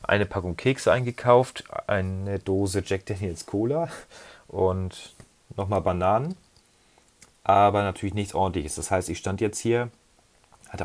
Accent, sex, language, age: German, male, German, 30-49